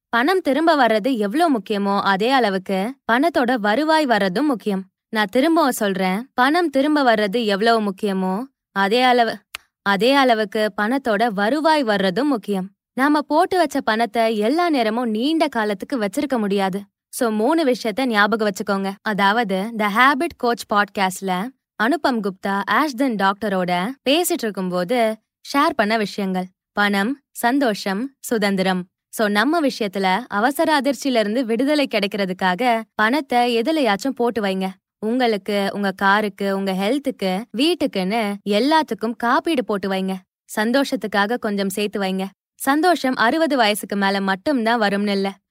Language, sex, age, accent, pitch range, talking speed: Tamil, female, 20-39, native, 200-270 Hz, 110 wpm